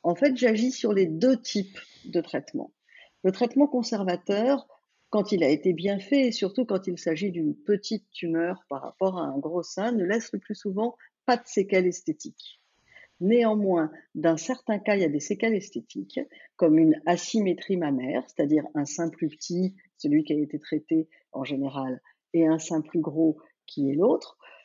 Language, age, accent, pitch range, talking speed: French, 50-69, French, 170-240 Hz, 185 wpm